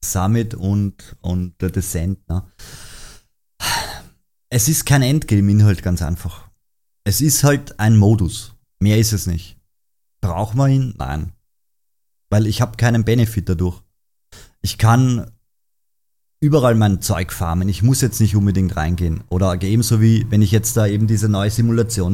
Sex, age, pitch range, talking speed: male, 30-49, 100-125 Hz, 145 wpm